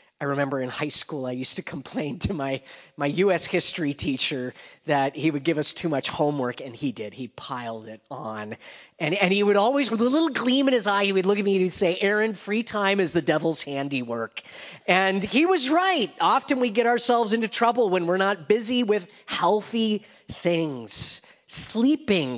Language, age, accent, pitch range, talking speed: English, 30-49, American, 155-220 Hz, 200 wpm